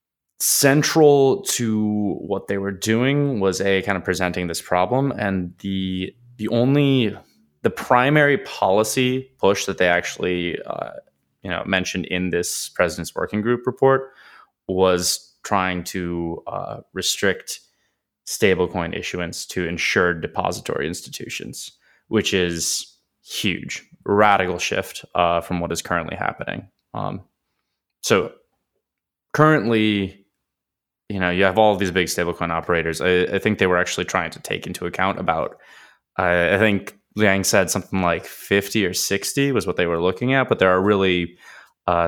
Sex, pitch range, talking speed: male, 90-105 Hz, 145 wpm